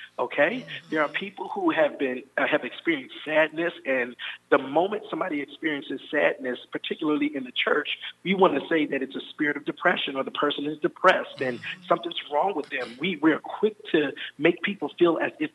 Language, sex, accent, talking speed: English, male, American, 195 wpm